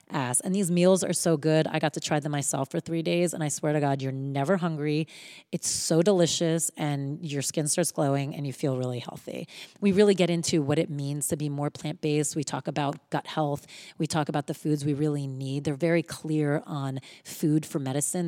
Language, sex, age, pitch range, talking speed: English, female, 30-49, 145-175 Hz, 225 wpm